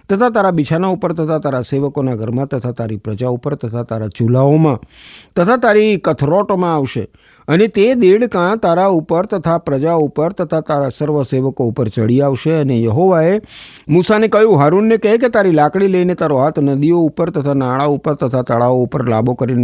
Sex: male